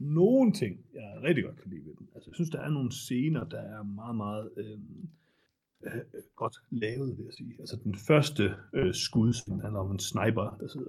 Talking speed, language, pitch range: 215 wpm, Danish, 105-145 Hz